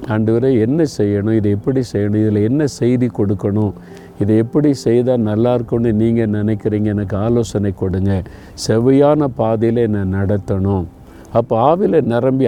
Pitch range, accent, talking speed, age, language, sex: 105-125 Hz, native, 130 wpm, 50-69, Tamil, male